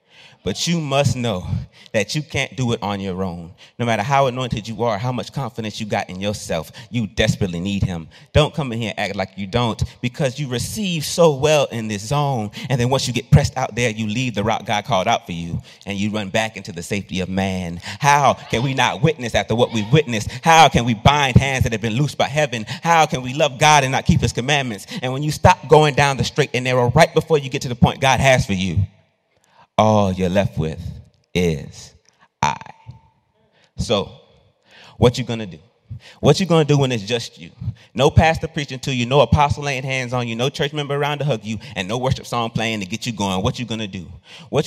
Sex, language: male, English